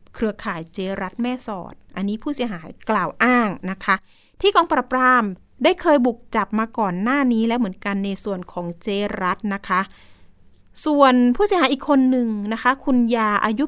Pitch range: 205-270 Hz